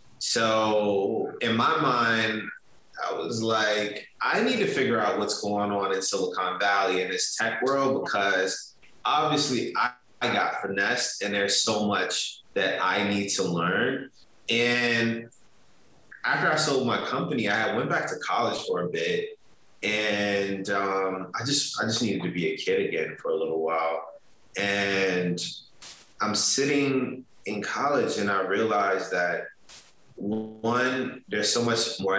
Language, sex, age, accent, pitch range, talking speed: English, male, 20-39, American, 95-125 Hz, 145 wpm